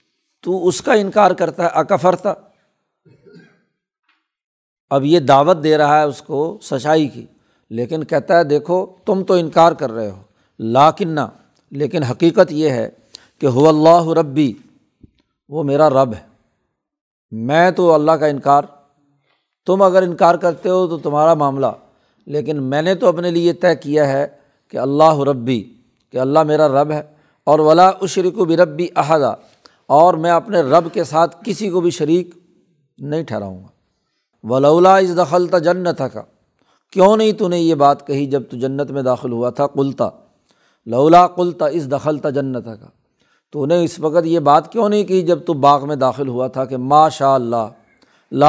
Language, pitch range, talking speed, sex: Urdu, 140-175 Hz, 165 wpm, male